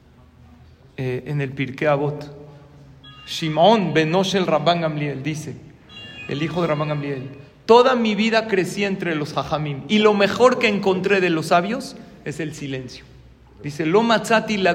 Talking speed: 150 wpm